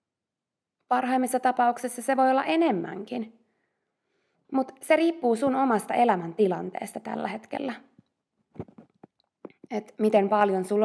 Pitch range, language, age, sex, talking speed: 185-250 Hz, Finnish, 20-39, female, 105 wpm